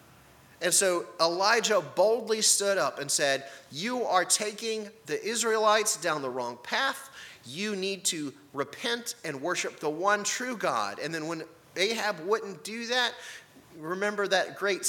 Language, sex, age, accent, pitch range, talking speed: English, male, 30-49, American, 155-210 Hz, 150 wpm